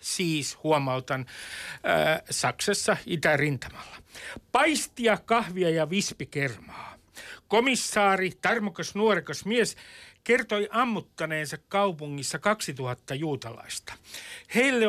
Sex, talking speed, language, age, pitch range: male, 75 wpm, Finnish, 60-79, 145-200 Hz